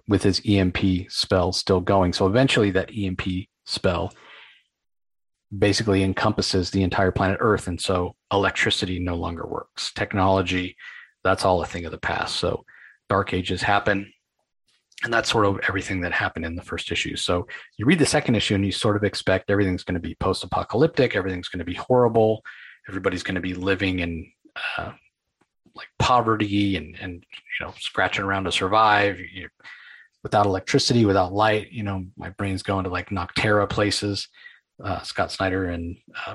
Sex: male